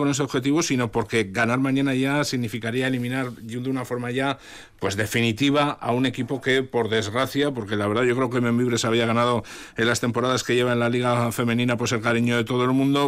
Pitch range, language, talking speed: 115-140 Hz, Spanish, 215 wpm